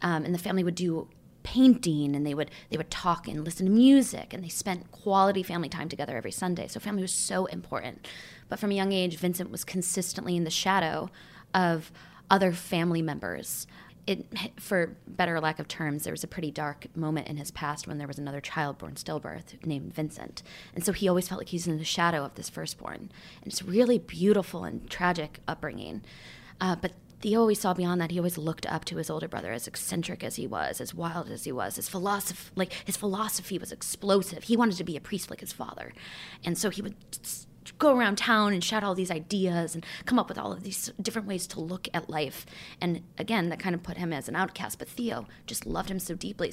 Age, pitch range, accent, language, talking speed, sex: 20-39, 165-200 Hz, American, English, 225 wpm, female